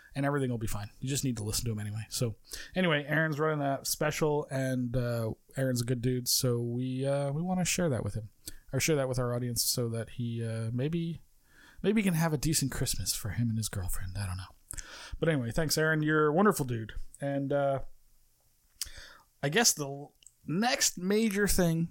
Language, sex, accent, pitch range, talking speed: English, male, American, 120-160 Hz, 210 wpm